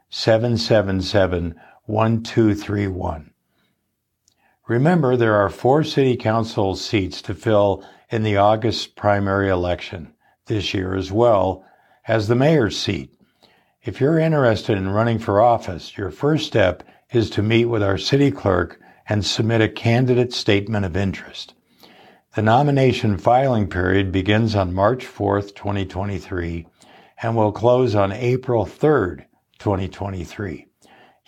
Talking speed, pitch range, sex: 130 wpm, 95-115 Hz, male